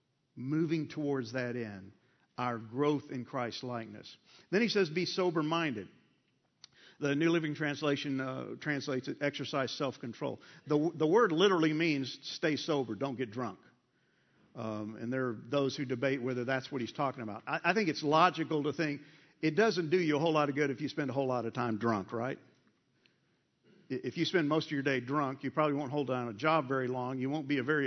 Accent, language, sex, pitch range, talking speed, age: American, English, male, 130-155 Hz, 205 wpm, 50-69